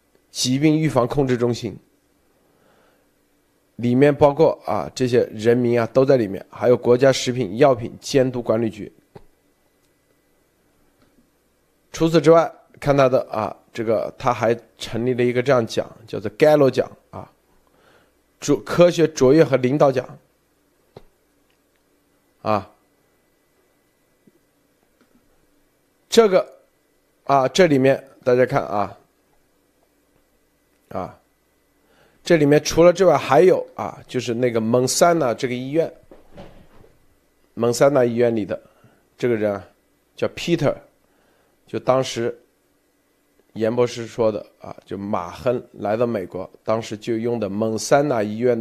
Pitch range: 115-155 Hz